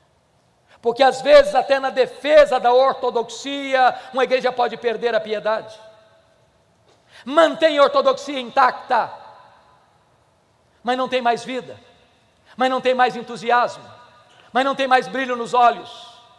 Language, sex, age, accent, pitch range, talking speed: Portuguese, male, 50-69, Brazilian, 205-255 Hz, 130 wpm